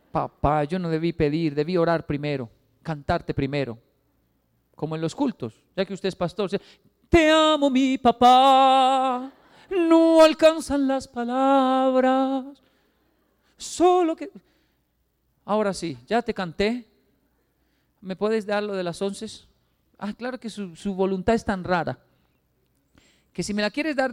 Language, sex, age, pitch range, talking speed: Spanish, male, 40-59, 145-210 Hz, 140 wpm